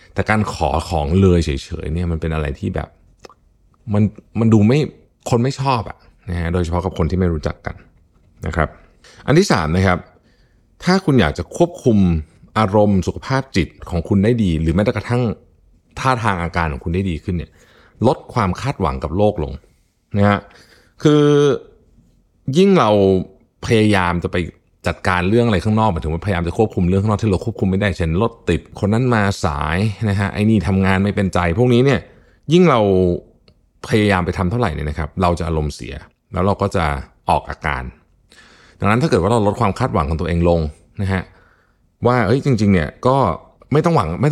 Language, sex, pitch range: Thai, male, 85-110 Hz